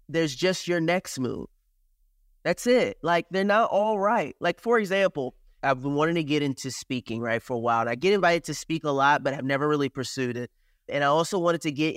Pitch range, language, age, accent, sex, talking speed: 145-215 Hz, English, 30-49, American, male, 230 wpm